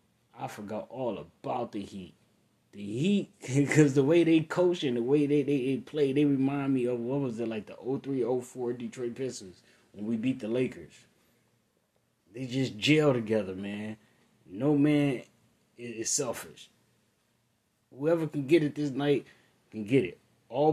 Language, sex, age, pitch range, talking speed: English, male, 20-39, 110-145 Hz, 165 wpm